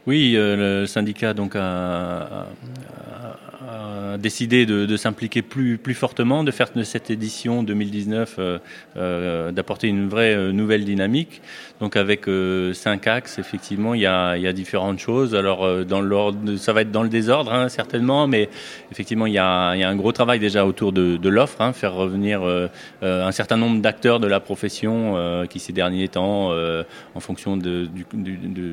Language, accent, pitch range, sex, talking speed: French, French, 90-110 Hz, male, 190 wpm